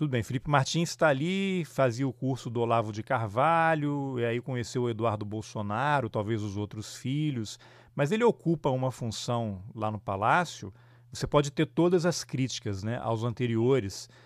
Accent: Brazilian